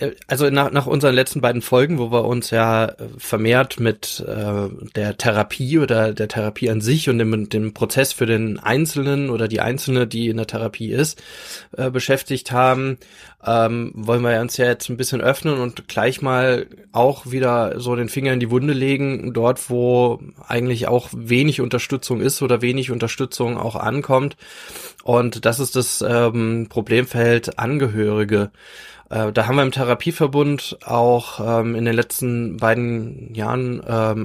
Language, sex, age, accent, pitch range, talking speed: German, male, 20-39, German, 115-135 Hz, 160 wpm